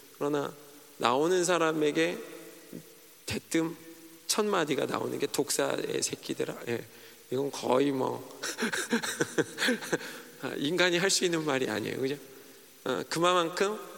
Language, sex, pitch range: Korean, male, 130-170 Hz